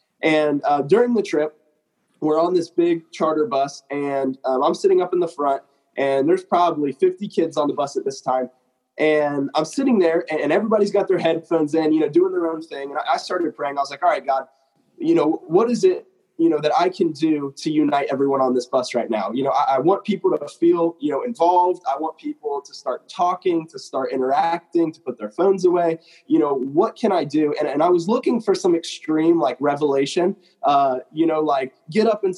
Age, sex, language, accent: 20-39, male, English, American